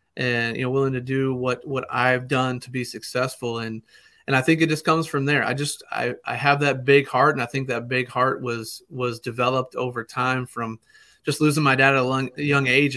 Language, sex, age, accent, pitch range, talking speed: English, male, 30-49, American, 125-150 Hz, 230 wpm